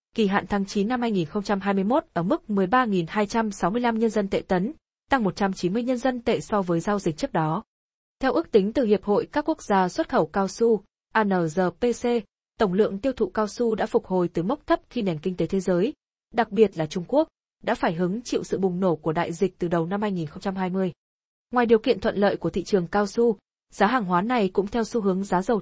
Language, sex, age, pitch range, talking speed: Vietnamese, female, 20-39, 185-235 Hz, 225 wpm